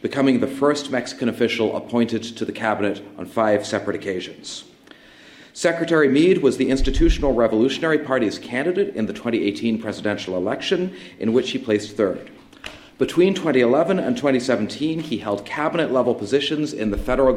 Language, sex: English, male